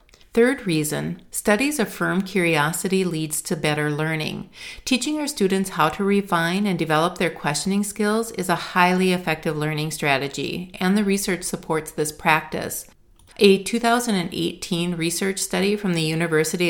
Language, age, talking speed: English, 40-59, 140 wpm